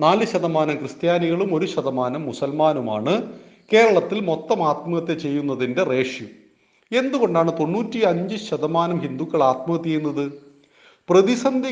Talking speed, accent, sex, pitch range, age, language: 85 wpm, native, male, 145-205 Hz, 40-59, Malayalam